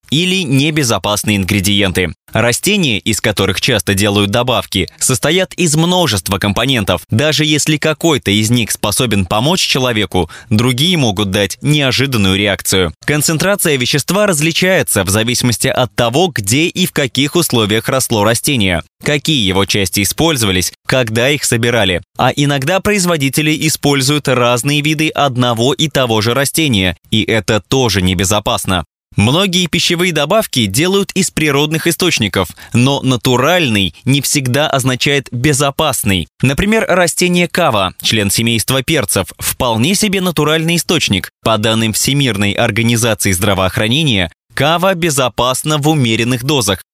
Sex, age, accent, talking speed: male, 20-39, native, 120 wpm